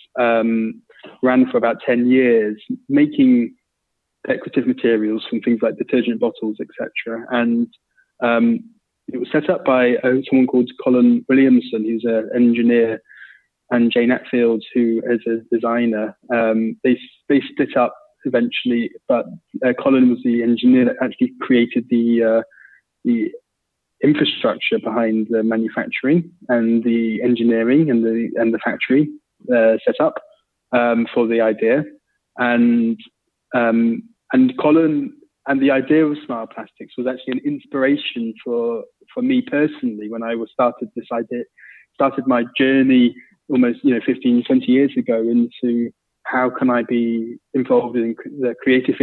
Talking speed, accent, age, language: 145 wpm, British, 20-39, English